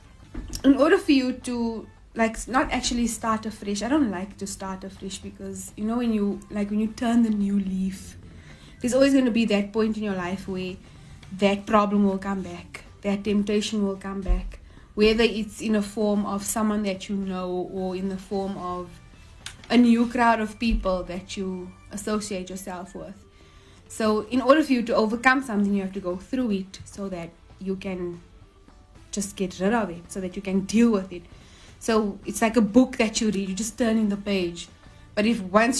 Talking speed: 200 wpm